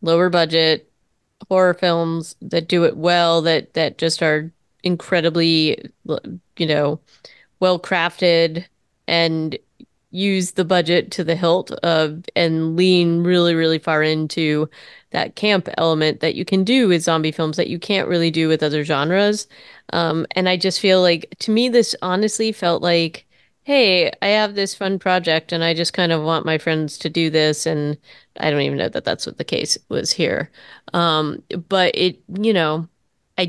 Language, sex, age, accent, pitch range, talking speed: English, female, 30-49, American, 160-185 Hz, 170 wpm